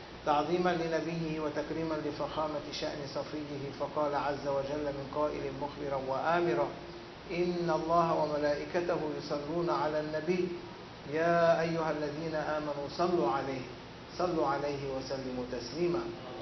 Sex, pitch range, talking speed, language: male, 145-165 Hz, 105 wpm, English